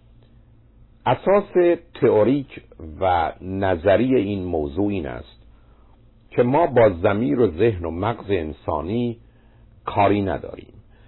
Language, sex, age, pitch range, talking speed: Persian, male, 50-69, 90-120 Hz, 105 wpm